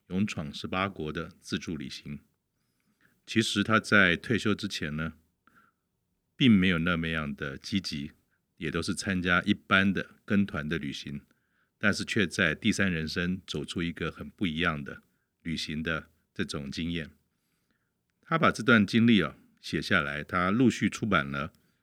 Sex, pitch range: male, 80-105 Hz